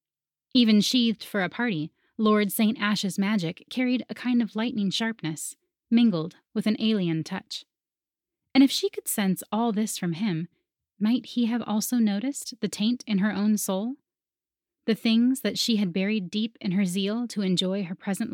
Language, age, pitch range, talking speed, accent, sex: English, 30-49, 180-235 Hz, 175 wpm, American, female